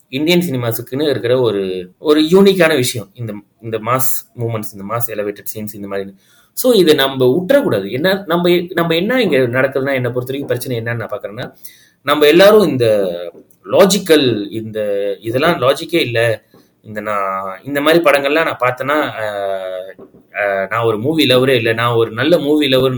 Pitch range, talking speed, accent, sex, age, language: 115-155 Hz, 135 wpm, native, male, 30-49, Tamil